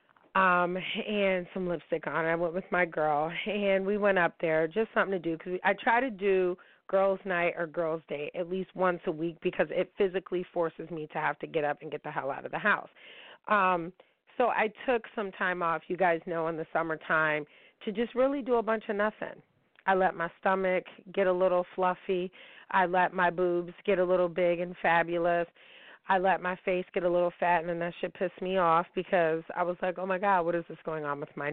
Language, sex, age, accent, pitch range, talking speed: English, female, 30-49, American, 165-195 Hz, 230 wpm